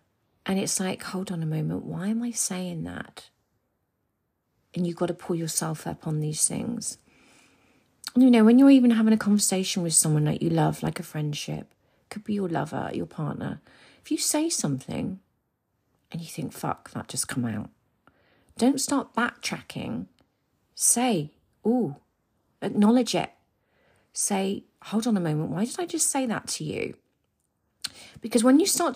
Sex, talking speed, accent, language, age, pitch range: female, 165 wpm, British, English, 40-59, 170-255 Hz